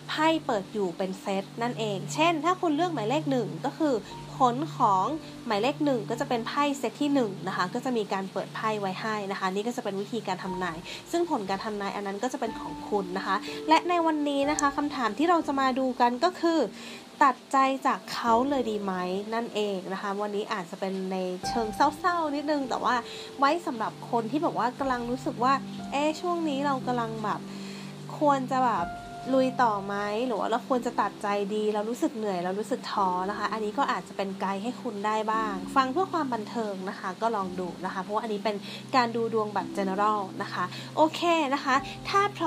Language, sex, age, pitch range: Thai, female, 20-39, 200-275 Hz